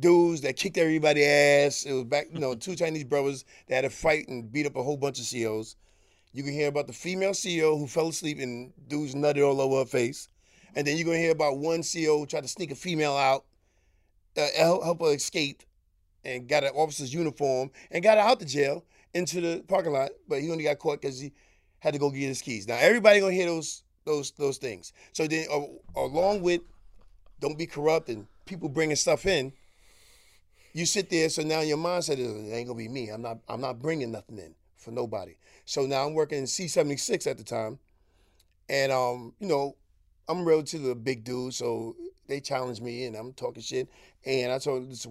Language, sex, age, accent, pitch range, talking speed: English, male, 30-49, American, 120-155 Hz, 220 wpm